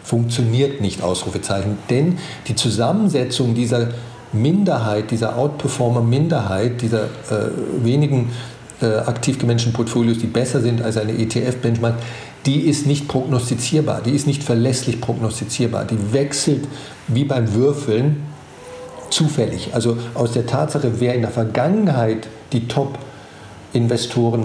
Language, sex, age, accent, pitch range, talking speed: German, male, 50-69, German, 115-135 Hz, 120 wpm